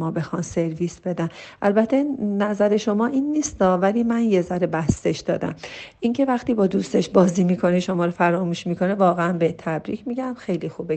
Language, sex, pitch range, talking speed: Persian, female, 175-225 Hz, 170 wpm